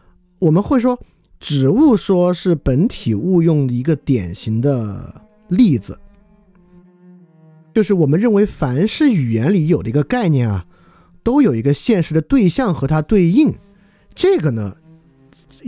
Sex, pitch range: male, 130-190 Hz